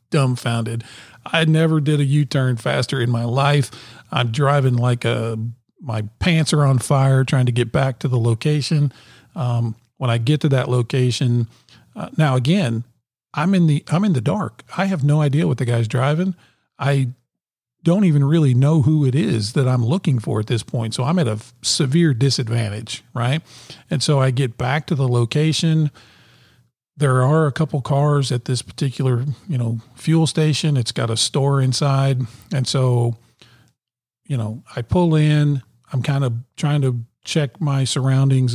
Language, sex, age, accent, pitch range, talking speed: English, male, 40-59, American, 120-145 Hz, 175 wpm